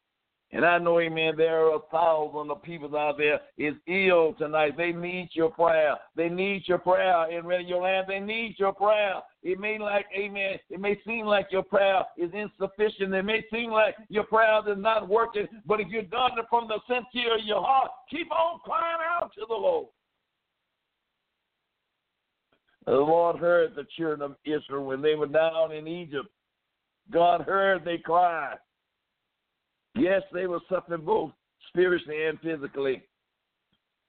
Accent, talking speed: American, 165 wpm